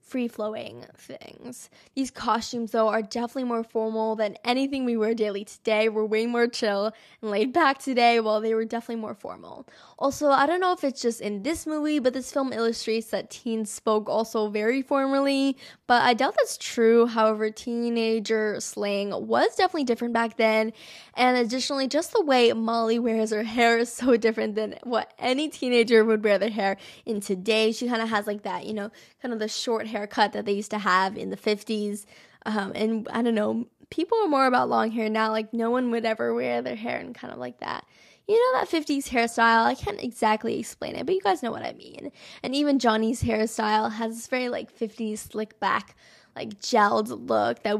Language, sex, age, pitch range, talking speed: English, female, 10-29, 215-245 Hz, 205 wpm